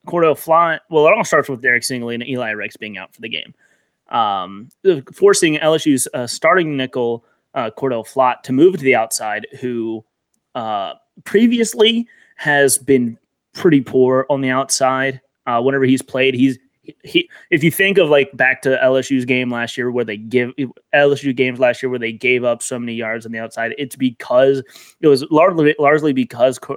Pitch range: 125-150 Hz